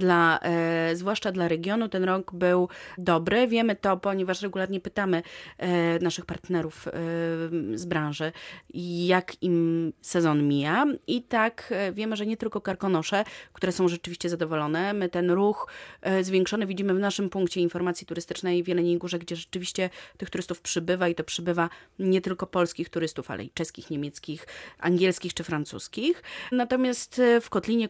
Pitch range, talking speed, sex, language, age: 170-205 Hz, 140 wpm, female, Polish, 30-49